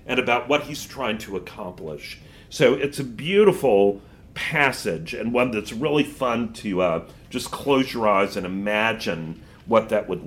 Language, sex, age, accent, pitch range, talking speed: English, male, 40-59, American, 110-160 Hz, 165 wpm